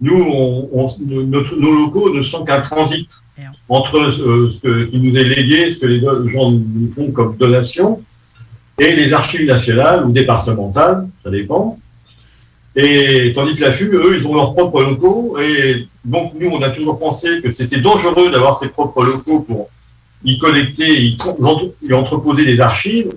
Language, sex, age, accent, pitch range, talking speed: French, male, 50-69, French, 120-160 Hz, 170 wpm